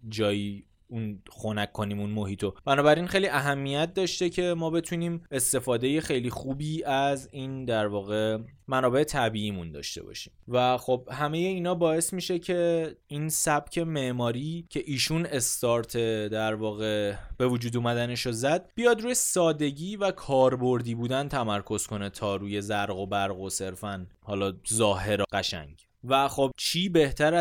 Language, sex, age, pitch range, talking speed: Persian, male, 20-39, 110-140 Hz, 140 wpm